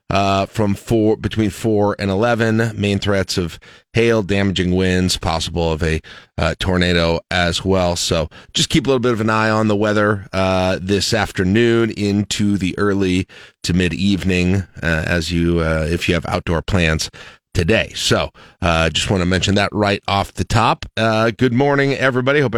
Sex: male